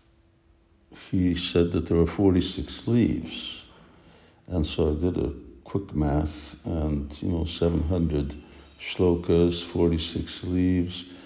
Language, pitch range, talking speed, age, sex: English, 80-95 Hz, 130 wpm, 60-79, male